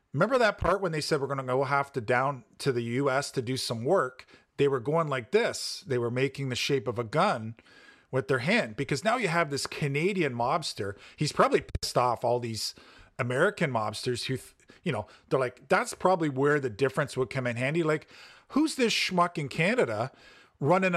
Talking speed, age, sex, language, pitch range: 205 wpm, 40-59, male, English, 125-155 Hz